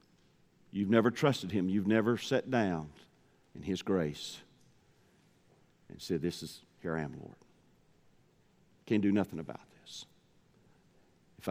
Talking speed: 130 wpm